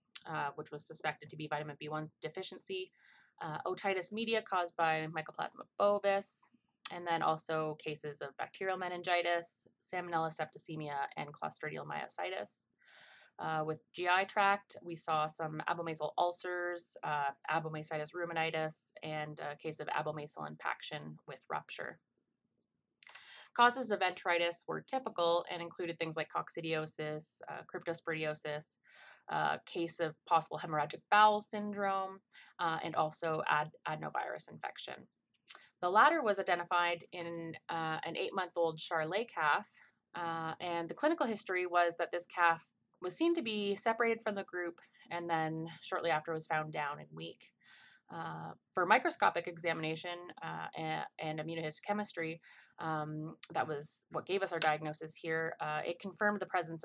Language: English